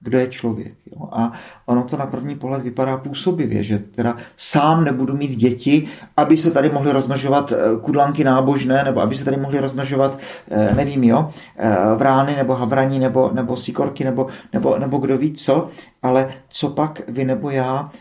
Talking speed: 170 wpm